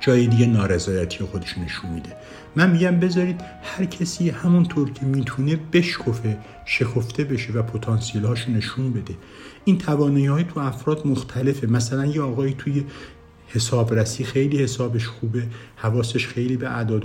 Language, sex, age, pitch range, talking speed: Persian, male, 60-79, 110-150 Hz, 145 wpm